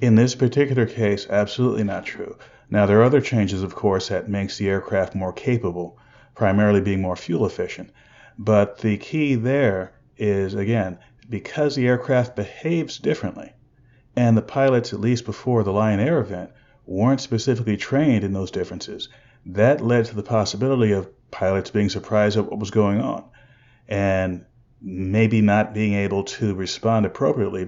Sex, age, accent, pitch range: male, 40-59, American, 100-125 Hz